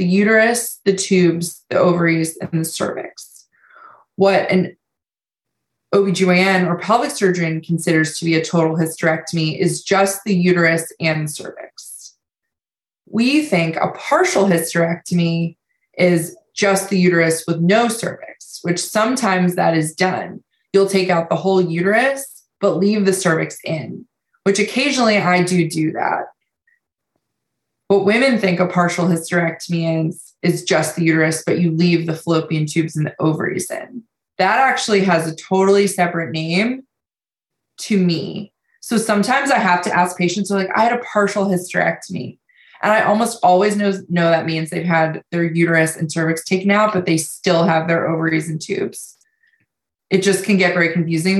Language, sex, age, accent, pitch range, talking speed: English, female, 20-39, American, 165-200 Hz, 160 wpm